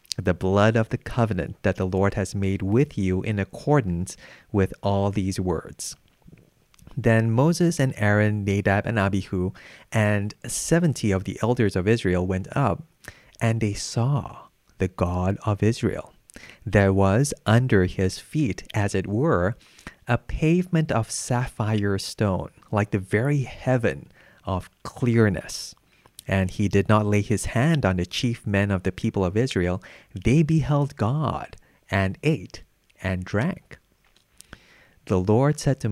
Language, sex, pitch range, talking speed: English, male, 100-125 Hz, 145 wpm